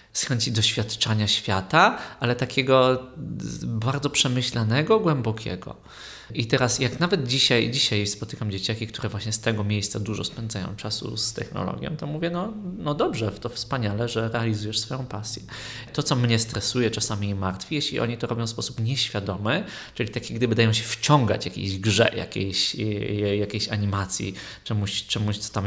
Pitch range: 105-120 Hz